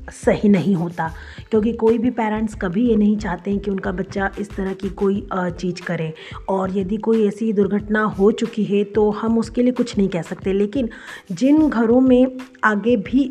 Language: Hindi